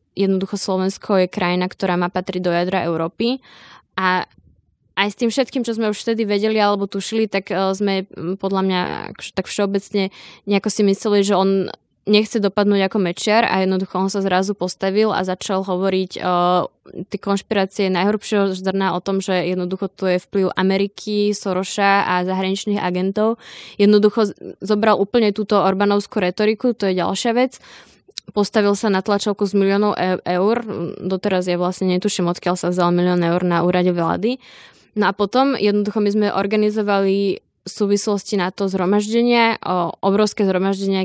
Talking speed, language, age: 160 wpm, Slovak, 20-39